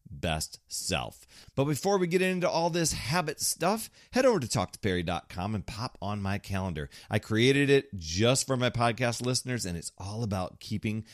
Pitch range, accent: 85-115 Hz, American